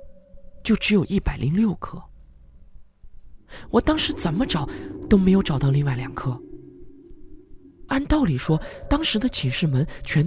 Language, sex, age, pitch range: Chinese, male, 20-39, 115-175 Hz